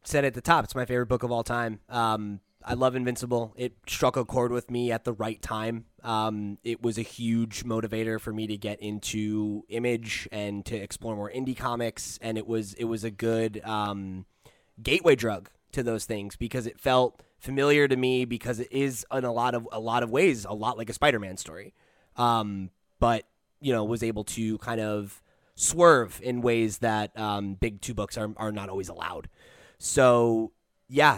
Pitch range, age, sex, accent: 110-125 Hz, 20-39, male, American